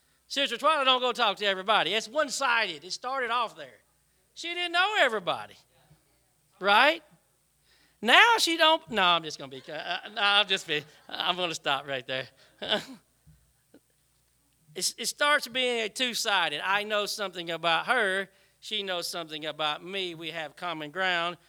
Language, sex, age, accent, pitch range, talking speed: English, male, 40-59, American, 170-255 Hz, 155 wpm